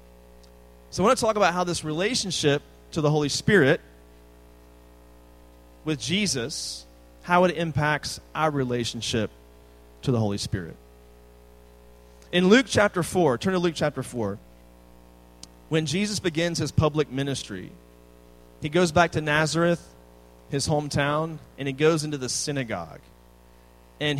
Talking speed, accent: 130 wpm, American